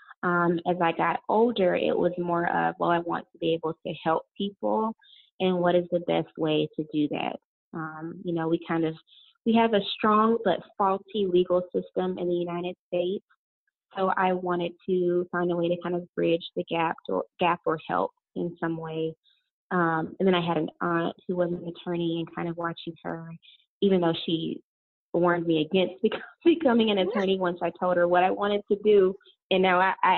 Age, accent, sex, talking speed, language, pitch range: 20-39, American, female, 205 wpm, English, 165-190 Hz